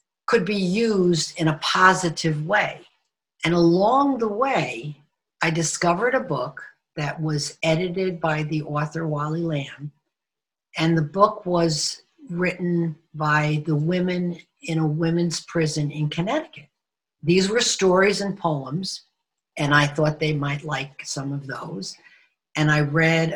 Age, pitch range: 50-69, 150-180 Hz